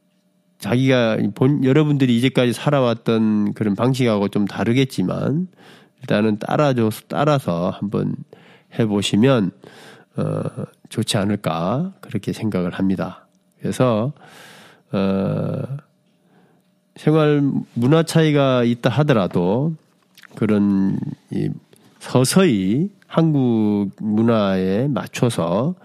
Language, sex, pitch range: Korean, male, 105-155 Hz